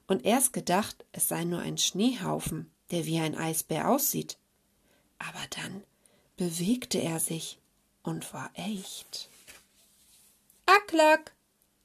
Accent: German